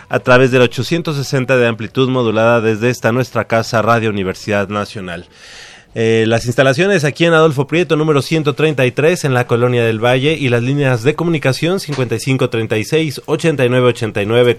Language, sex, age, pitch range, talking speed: Spanish, male, 30-49, 115-140 Hz, 145 wpm